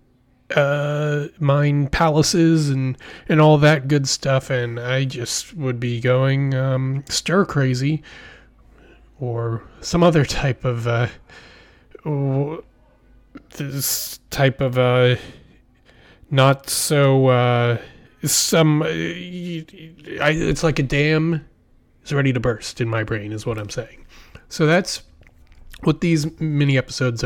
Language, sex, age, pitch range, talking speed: English, male, 30-49, 125-170 Hz, 120 wpm